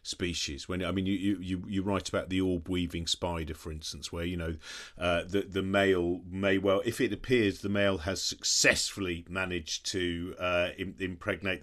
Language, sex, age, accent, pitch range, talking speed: English, male, 40-59, British, 95-125 Hz, 180 wpm